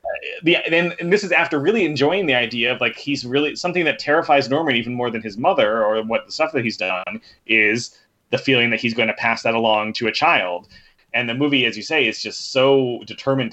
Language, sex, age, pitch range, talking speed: English, male, 30-49, 115-150 Hz, 230 wpm